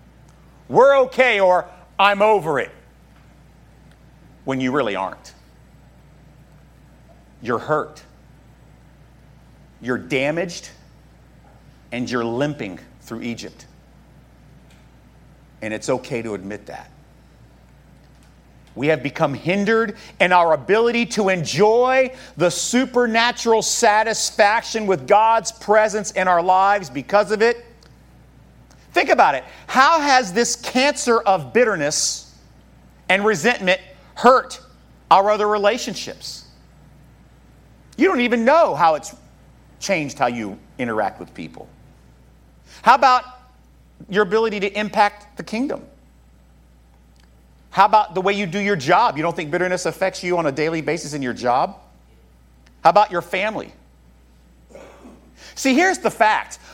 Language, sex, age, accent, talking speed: English, male, 50-69, American, 115 wpm